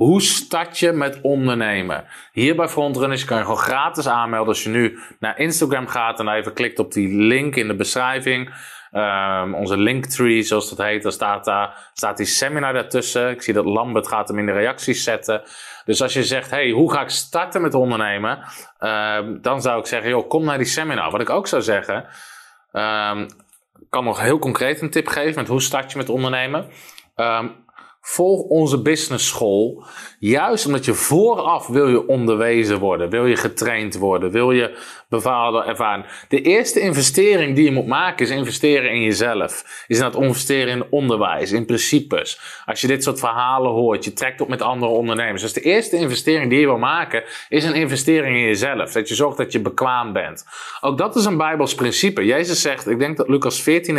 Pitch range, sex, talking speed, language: 110-150 Hz, male, 195 wpm, Dutch